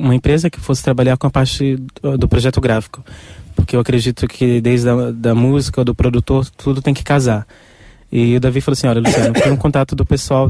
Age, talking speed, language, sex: 20-39, 210 wpm, Portuguese, male